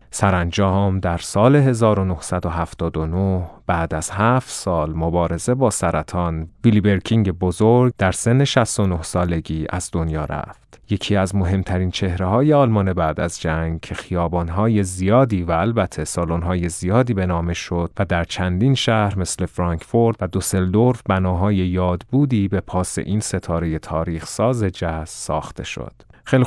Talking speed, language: 135 wpm, Persian